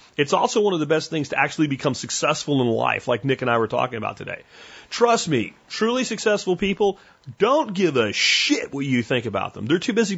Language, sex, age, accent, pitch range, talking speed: English, male, 30-49, American, 120-165 Hz, 225 wpm